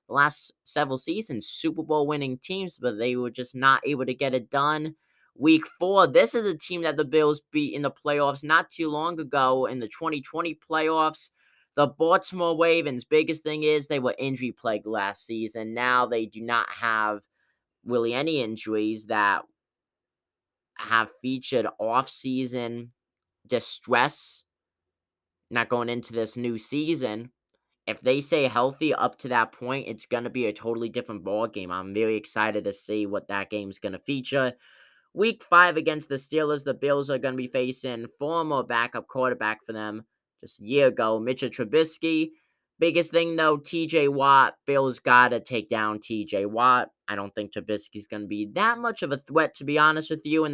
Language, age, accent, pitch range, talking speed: English, 20-39, American, 115-155 Hz, 175 wpm